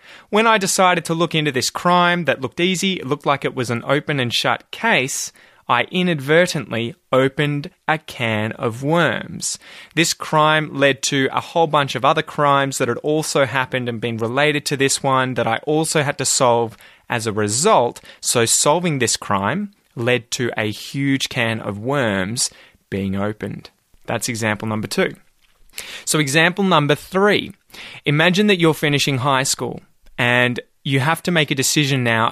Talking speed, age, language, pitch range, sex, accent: 170 wpm, 20-39, English, 115-155 Hz, male, Australian